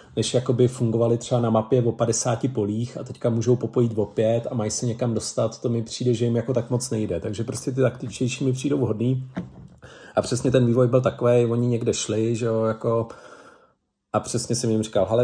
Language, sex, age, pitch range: Czech, male, 40-59, 105-125 Hz